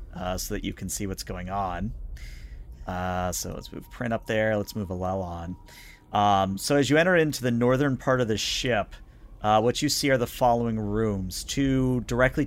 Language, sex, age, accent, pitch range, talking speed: English, male, 40-59, American, 100-125 Hz, 200 wpm